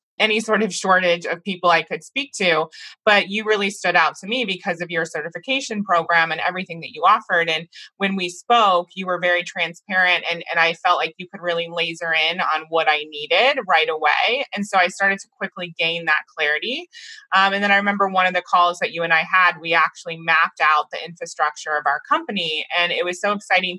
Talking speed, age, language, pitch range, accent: 220 wpm, 20-39, English, 165-195 Hz, American